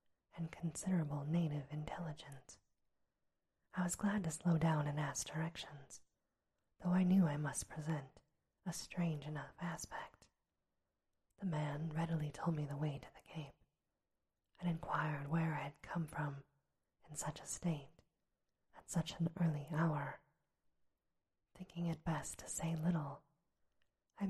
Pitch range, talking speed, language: 150-165 Hz, 140 wpm, English